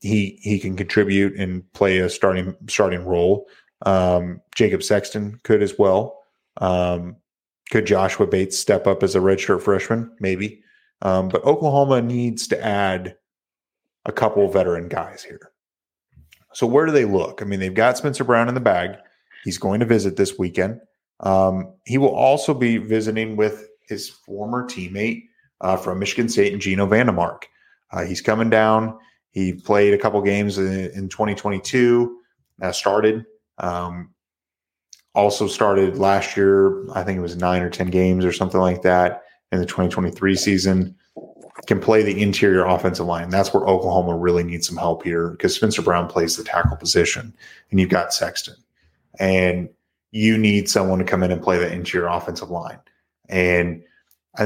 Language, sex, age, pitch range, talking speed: English, male, 30-49, 90-105 Hz, 165 wpm